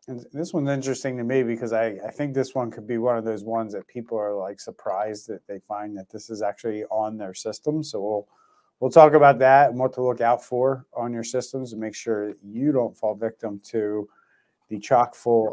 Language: English